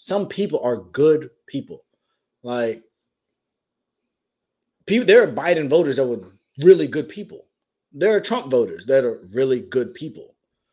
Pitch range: 125-190 Hz